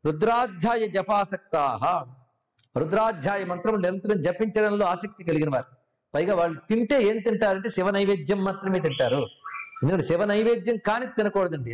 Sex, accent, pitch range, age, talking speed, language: male, native, 160-215 Hz, 50-69, 125 wpm, Telugu